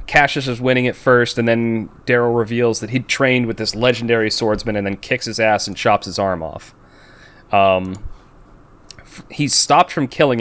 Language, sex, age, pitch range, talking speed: English, male, 30-49, 100-120 Hz, 190 wpm